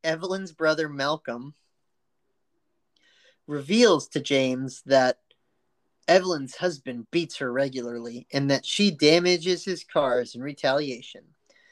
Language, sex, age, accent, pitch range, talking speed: English, male, 30-49, American, 140-180 Hz, 100 wpm